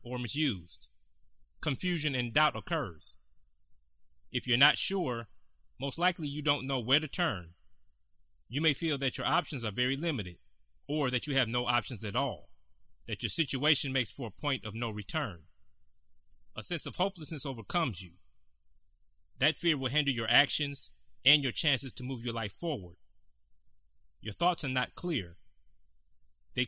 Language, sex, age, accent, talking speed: English, male, 30-49, American, 160 wpm